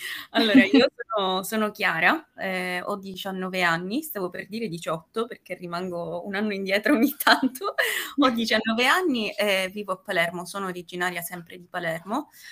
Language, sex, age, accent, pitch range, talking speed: Italian, female, 20-39, native, 185-225 Hz, 155 wpm